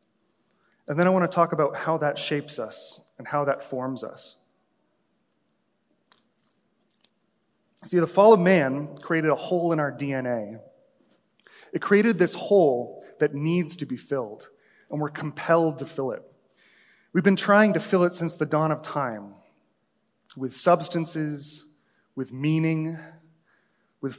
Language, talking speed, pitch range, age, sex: English, 145 wpm, 140-175 Hz, 30-49, male